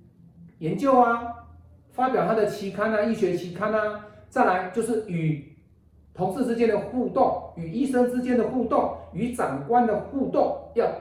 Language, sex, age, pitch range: Chinese, male, 40-59, 130-195 Hz